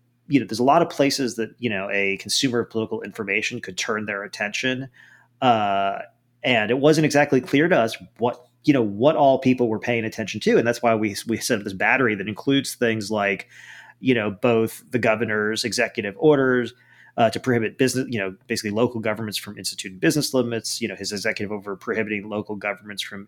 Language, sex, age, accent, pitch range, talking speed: English, male, 30-49, American, 110-130 Hz, 205 wpm